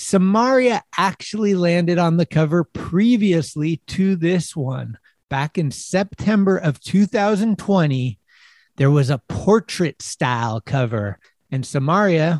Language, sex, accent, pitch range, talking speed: English, male, American, 145-195 Hz, 105 wpm